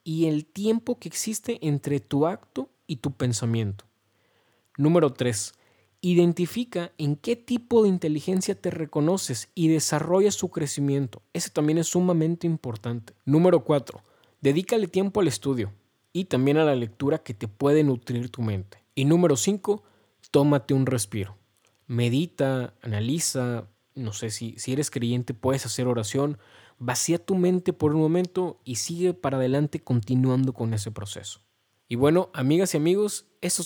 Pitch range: 120-165 Hz